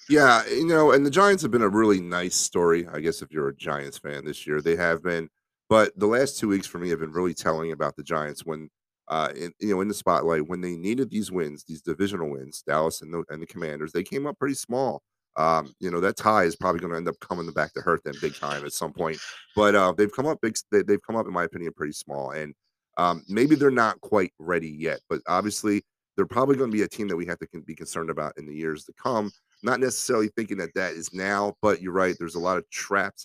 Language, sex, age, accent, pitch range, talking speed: English, male, 30-49, American, 80-105 Hz, 255 wpm